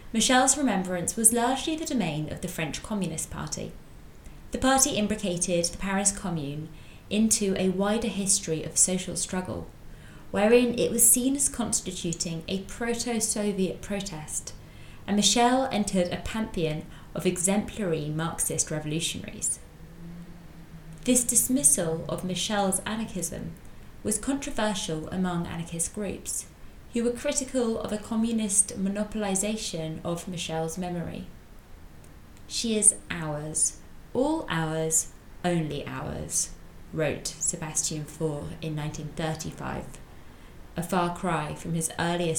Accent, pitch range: British, 160-215 Hz